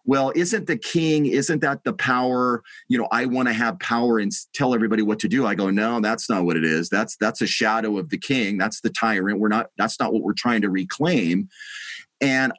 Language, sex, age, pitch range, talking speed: English, male, 40-59, 110-140 Hz, 235 wpm